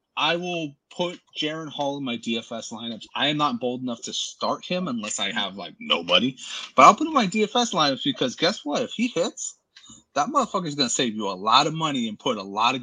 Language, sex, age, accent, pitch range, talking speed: English, male, 30-49, American, 125-200 Hz, 245 wpm